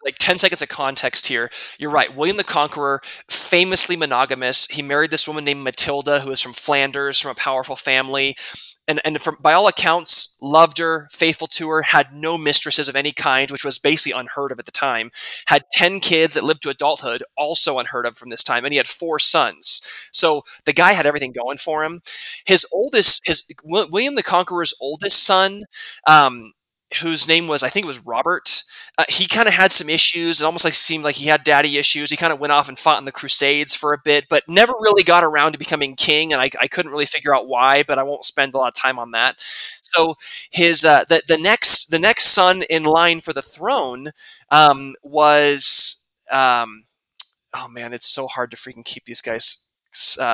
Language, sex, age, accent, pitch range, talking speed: English, male, 20-39, American, 140-165 Hz, 210 wpm